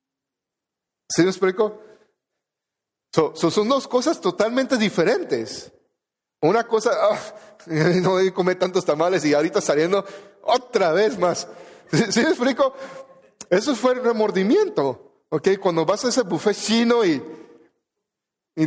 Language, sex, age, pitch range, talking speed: Spanish, male, 40-59, 160-215 Hz, 135 wpm